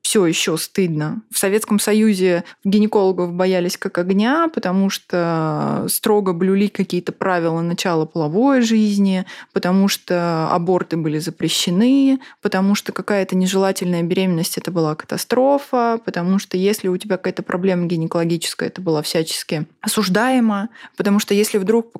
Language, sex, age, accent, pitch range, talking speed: Russian, female, 20-39, native, 180-220 Hz, 135 wpm